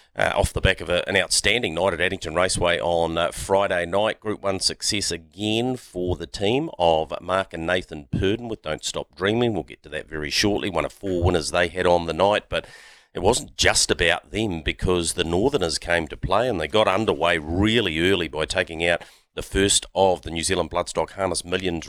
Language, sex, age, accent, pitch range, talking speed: English, male, 40-59, Australian, 85-110 Hz, 210 wpm